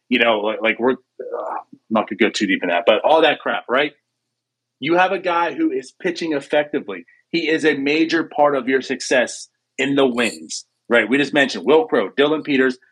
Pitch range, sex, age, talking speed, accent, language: 120-165 Hz, male, 40-59, 215 wpm, American, English